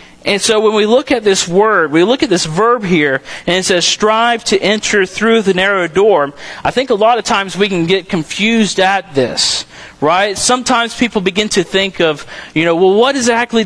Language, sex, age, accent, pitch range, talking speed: English, male, 40-59, American, 185-225 Hz, 210 wpm